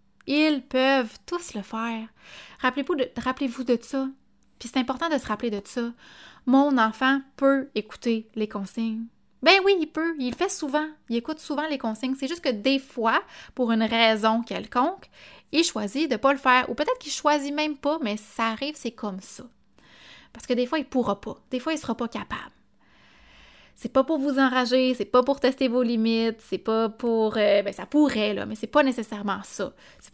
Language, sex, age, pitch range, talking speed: French, female, 20-39, 220-280 Hz, 210 wpm